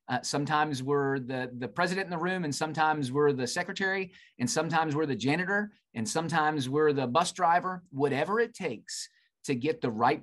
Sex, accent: male, American